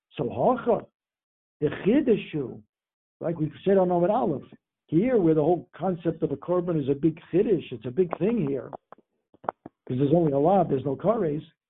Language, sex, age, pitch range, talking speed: English, male, 60-79, 155-195 Hz, 180 wpm